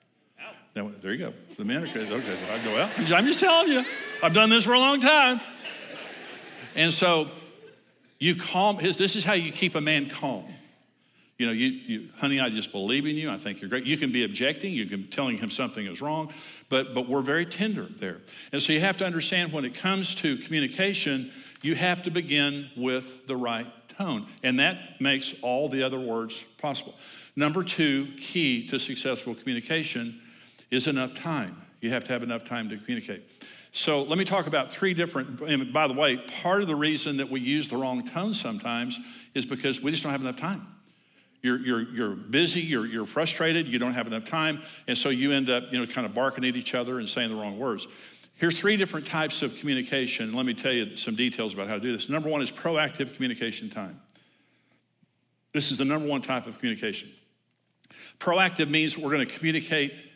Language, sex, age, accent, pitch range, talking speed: English, male, 60-79, American, 130-185 Hz, 205 wpm